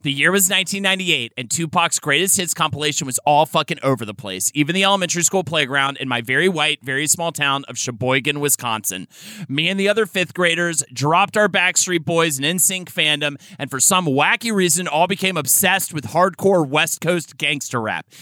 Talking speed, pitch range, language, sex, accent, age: 190 wpm, 145-190 Hz, English, male, American, 30-49